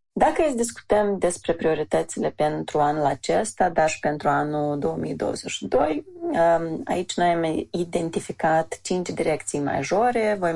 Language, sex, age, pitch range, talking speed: Romanian, female, 30-49, 150-180 Hz, 120 wpm